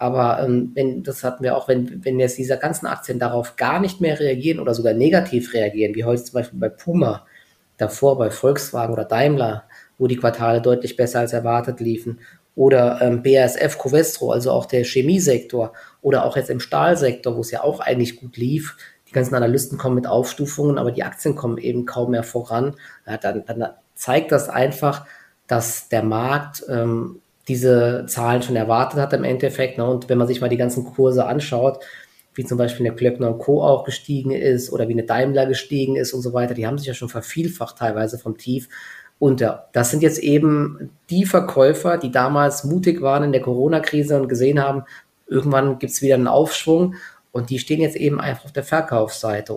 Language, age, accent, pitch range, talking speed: German, 20-39, German, 120-140 Hz, 195 wpm